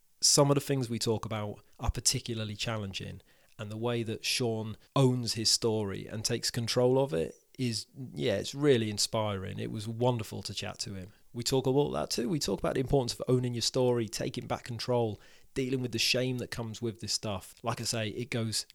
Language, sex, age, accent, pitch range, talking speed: English, male, 30-49, British, 105-125 Hz, 210 wpm